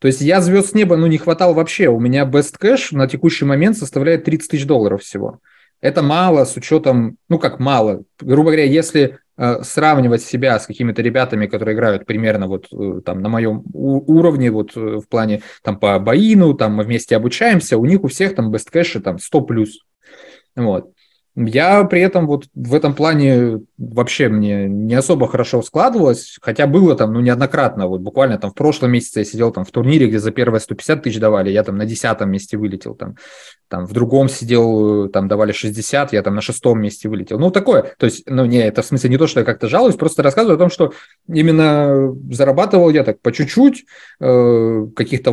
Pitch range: 110-155 Hz